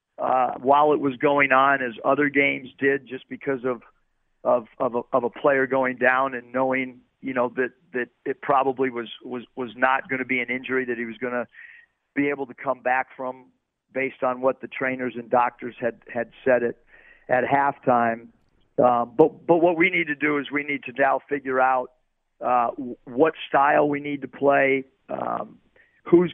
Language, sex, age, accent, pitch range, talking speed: English, male, 50-69, American, 125-140 Hz, 195 wpm